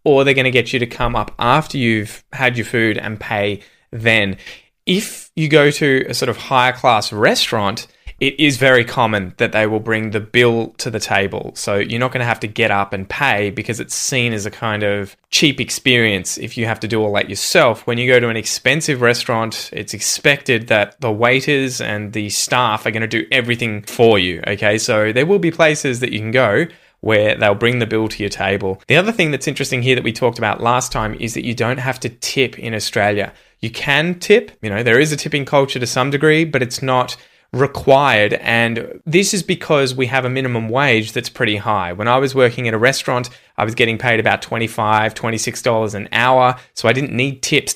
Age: 20-39